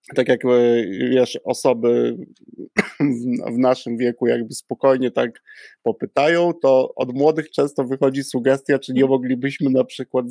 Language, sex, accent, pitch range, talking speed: Polish, male, native, 115-130 Hz, 135 wpm